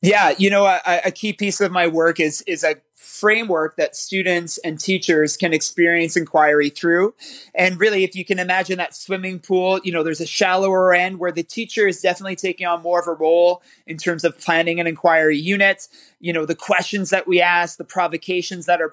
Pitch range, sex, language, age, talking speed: 165-195 Hz, male, English, 30-49, 210 wpm